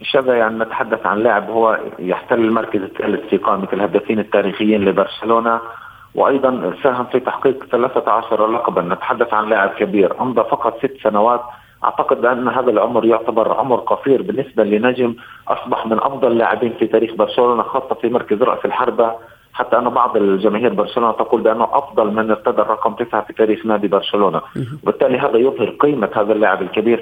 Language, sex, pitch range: Arabic, male, 110-130 Hz